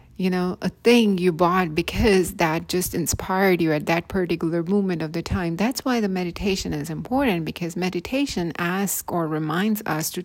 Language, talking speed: English, 180 wpm